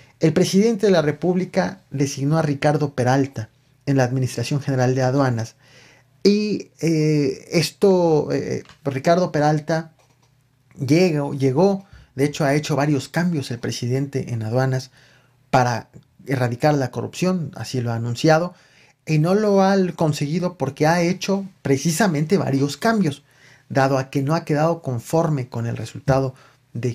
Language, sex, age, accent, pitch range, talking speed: Spanish, male, 40-59, Mexican, 130-160 Hz, 140 wpm